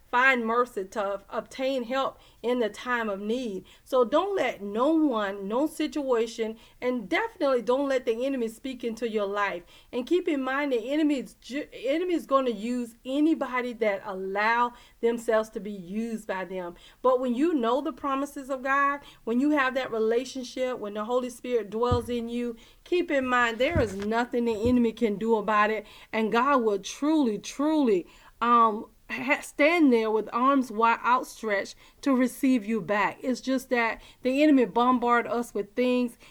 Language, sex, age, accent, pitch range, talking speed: English, female, 40-59, American, 225-265 Hz, 170 wpm